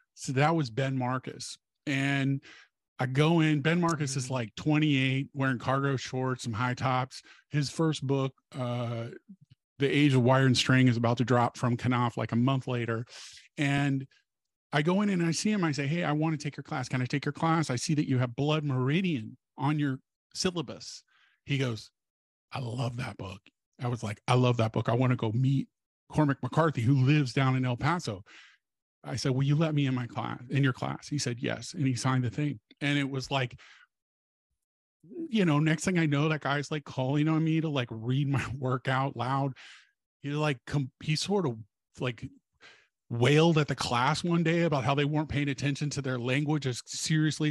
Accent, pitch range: American, 125-150 Hz